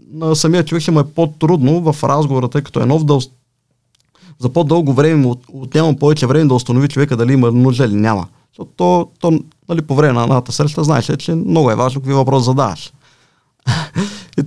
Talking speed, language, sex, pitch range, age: 190 wpm, Bulgarian, male, 125-165 Hz, 30-49